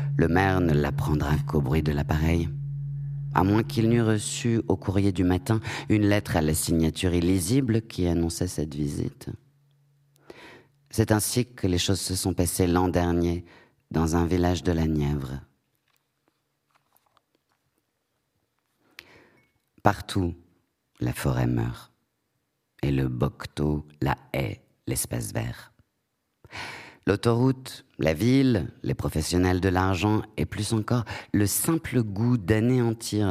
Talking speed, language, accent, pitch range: 125 wpm, French, French, 80-115 Hz